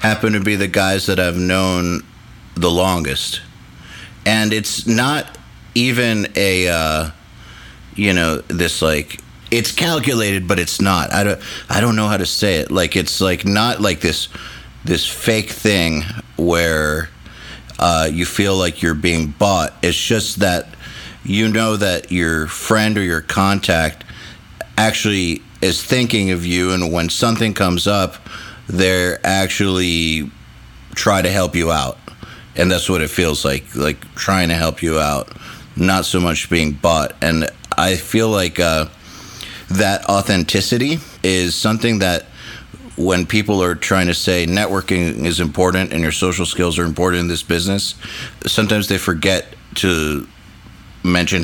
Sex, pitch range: male, 85-105 Hz